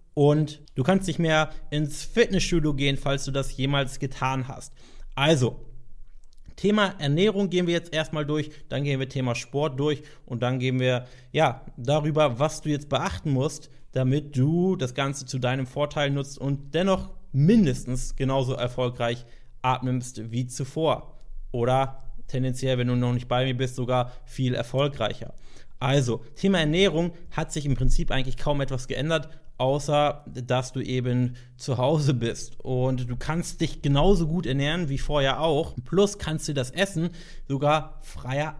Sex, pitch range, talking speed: male, 125-155 Hz, 160 wpm